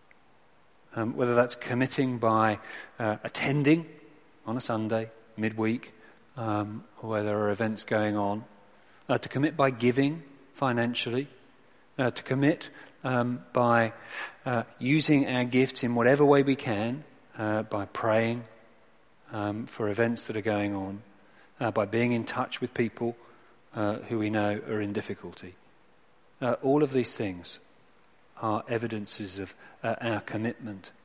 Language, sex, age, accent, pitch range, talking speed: English, male, 40-59, British, 105-125 Hz, 145 wpm